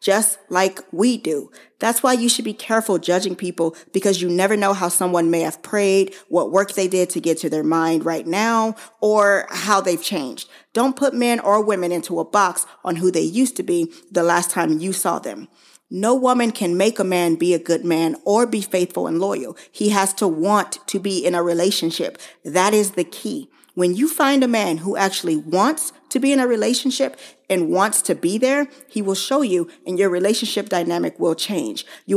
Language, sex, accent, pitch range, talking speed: English, female, American, 175-220 Hz, 210 wpm